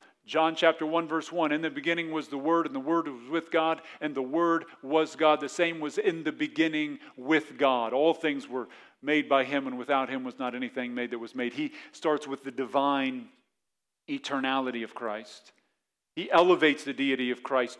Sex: male